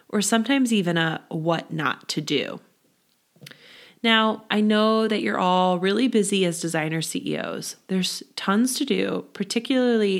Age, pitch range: 20-39, 175-230 Hz